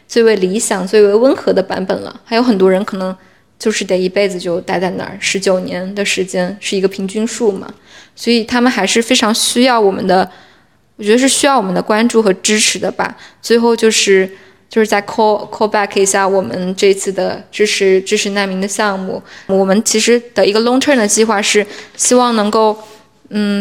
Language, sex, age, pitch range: Chinese, female, 20-39, 195-230 Hz